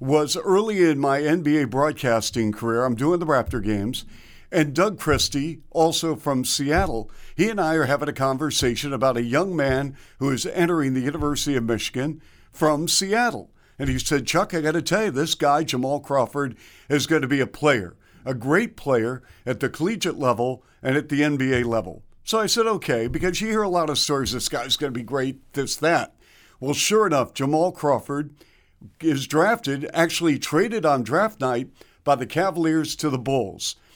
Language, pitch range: English, 125-160 Hz